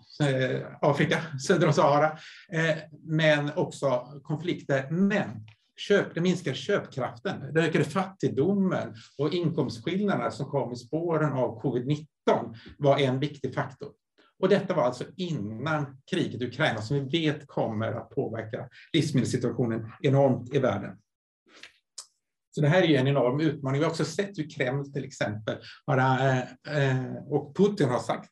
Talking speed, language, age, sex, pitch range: 125 wpm, English, 50-69, male, 125-155 Hz